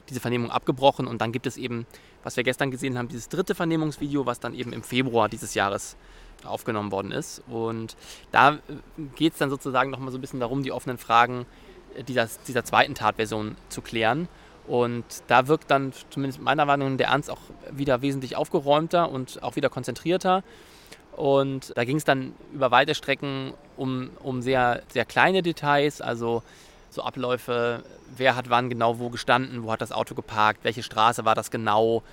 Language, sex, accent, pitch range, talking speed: German, male, German, 120-145 Hz, 185 wpm